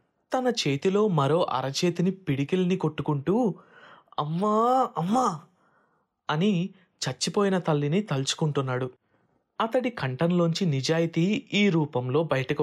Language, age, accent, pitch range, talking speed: Telugu, 20-39, native, 135-180 Hz, 85 wpm